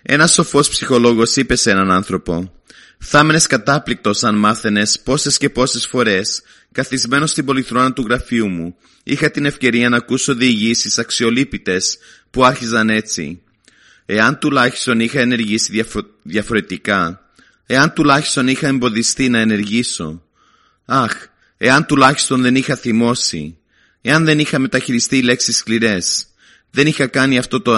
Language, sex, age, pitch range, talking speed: Greek, male, 30-49, 105-135 Hz, 130 wpm